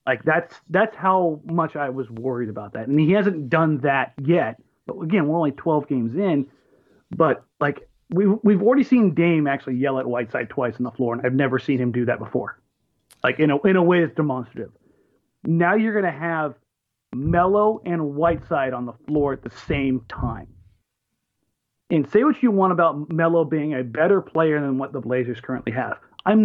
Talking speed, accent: 195 wpm, American